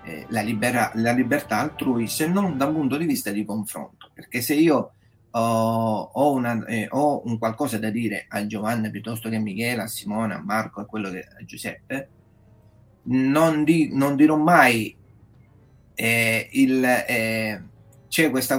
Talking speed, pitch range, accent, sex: 160 wpm, 110-135 Hz, native, male